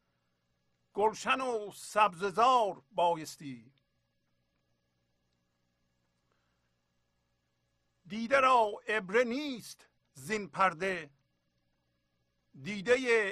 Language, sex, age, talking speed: Persian, male, 60-79, 45 wpm